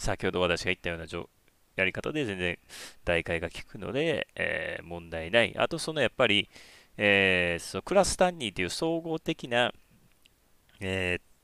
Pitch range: 90-145 Hz